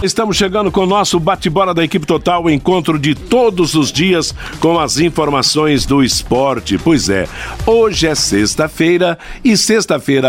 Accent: Brazilian